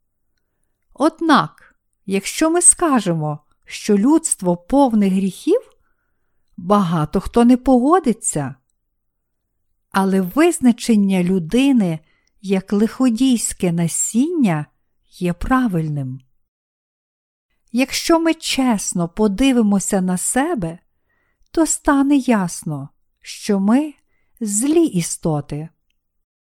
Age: 50-69